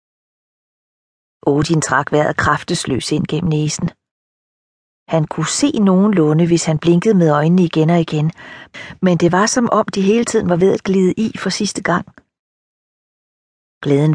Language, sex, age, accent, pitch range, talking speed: Danish, female, 40-59, native, 155-195 Hz, 155 wpm